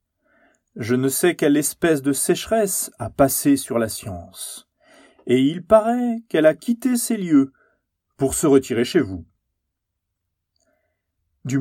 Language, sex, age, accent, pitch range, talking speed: French, male, 40-59, French, 105-160 Hz, 135 wpm